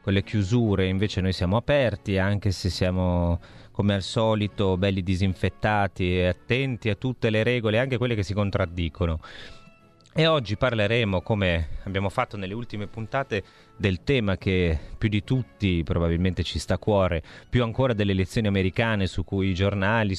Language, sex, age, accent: Italian, male, 30-49, native